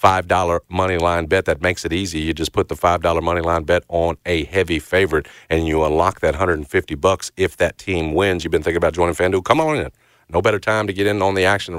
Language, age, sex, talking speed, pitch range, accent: English, 40-59, male, 235 wpm, 85-95 Hz, American